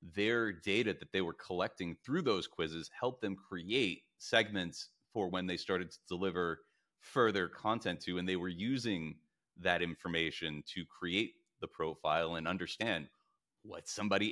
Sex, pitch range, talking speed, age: male, 85-110 Hz, 150 wpm, 30-49